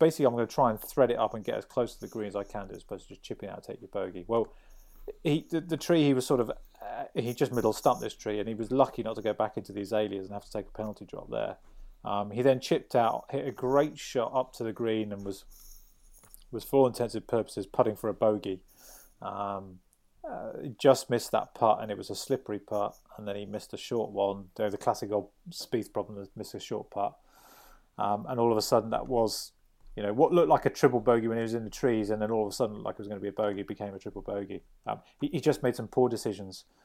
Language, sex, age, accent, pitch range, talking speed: English, male, 30-49, British, 100-125 Hz, 275 wpm